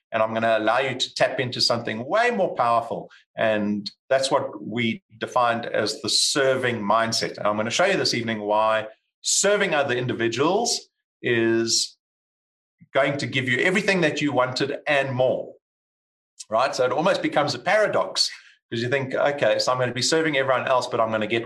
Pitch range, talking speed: 105-150 Hz, 195 wpm